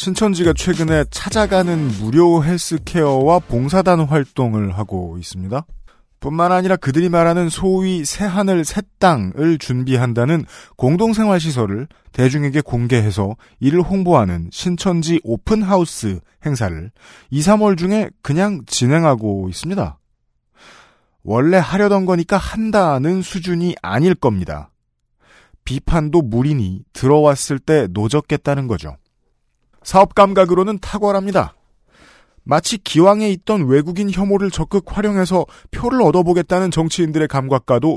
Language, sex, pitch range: Korean, male, 130-190 Hz